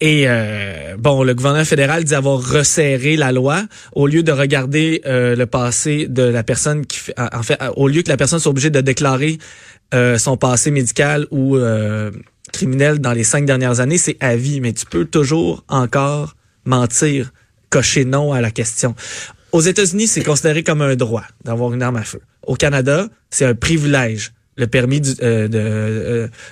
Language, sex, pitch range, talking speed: French, male, 120-150 Hz, 190 wpm